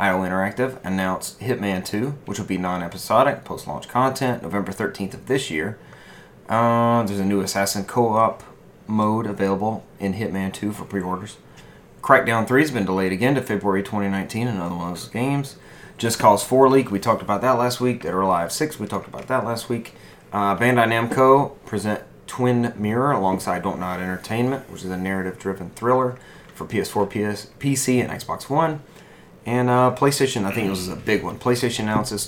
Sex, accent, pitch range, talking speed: male, American, 95-120 Hz, 180 wpm